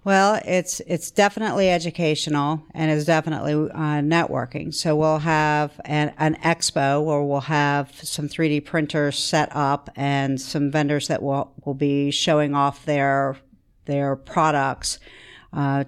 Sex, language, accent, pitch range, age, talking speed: female, English, American, 135-155 Hz, 50-69, 140 wpm